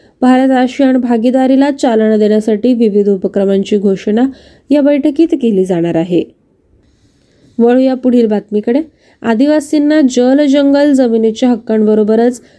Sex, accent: female, native